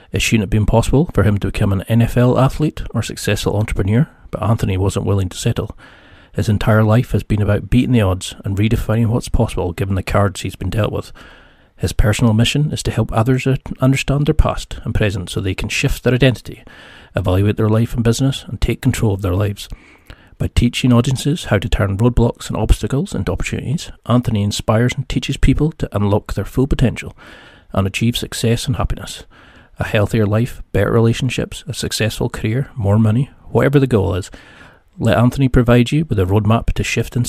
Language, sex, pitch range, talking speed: English, male, 100-125 Hz, 195 wpm